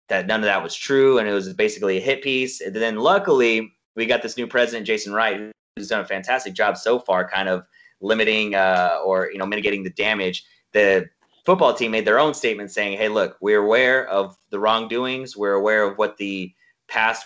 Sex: male